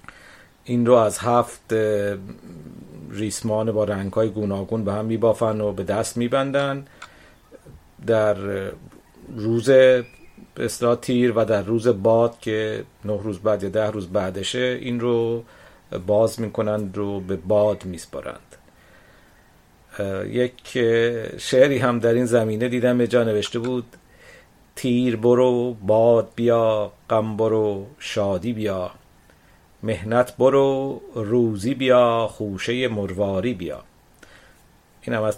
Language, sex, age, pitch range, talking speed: Persian, male, 50-69, 105-125 Hz, 115 wpm